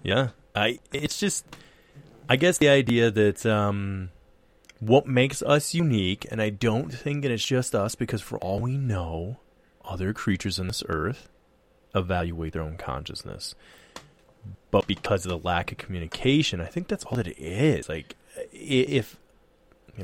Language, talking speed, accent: English, 160 wpm, American